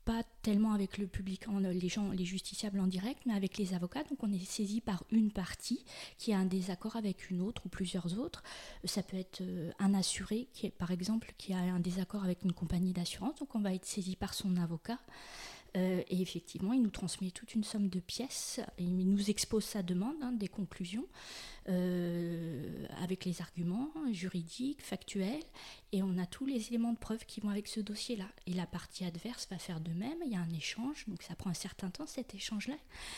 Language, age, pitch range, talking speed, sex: French, 20-39, 180-225 Hz, 215 wpm, female